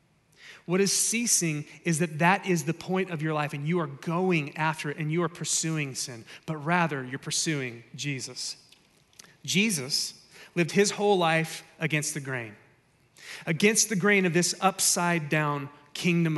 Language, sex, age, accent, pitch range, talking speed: English, male, 30-49, American, 145-175 Hz, 160 wpm